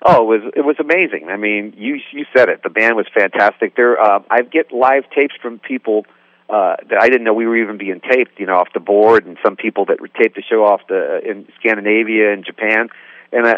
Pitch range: 105-140 Hz